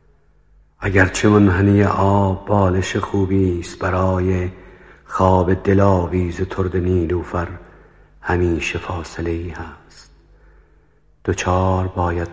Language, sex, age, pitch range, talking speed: Persian, male, 50-69, 85-95 Hz, 90 wpm